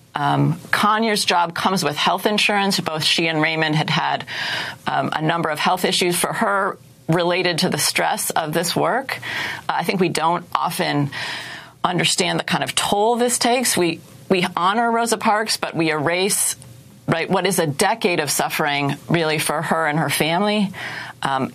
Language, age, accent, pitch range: English, 40-59, American, 160-200 Hz